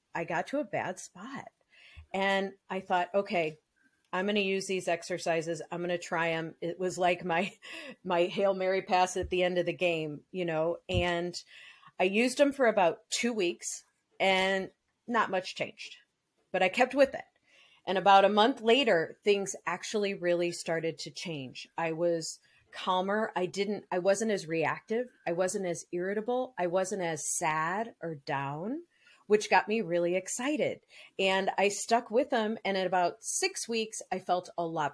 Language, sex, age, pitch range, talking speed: English, female, 40-59, 165-200 Hz, 175 wpm